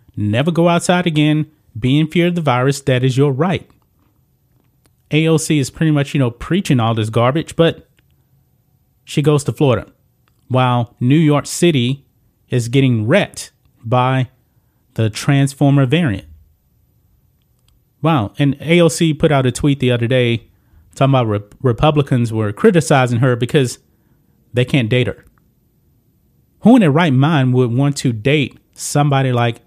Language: English